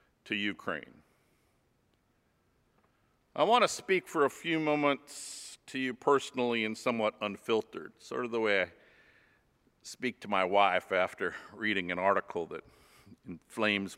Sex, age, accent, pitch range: male, 50-69, American, 110-145 Hz